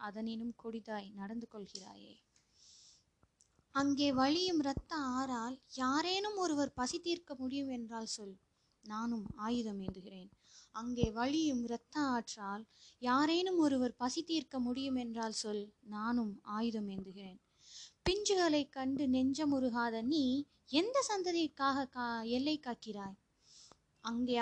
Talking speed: 105 wpm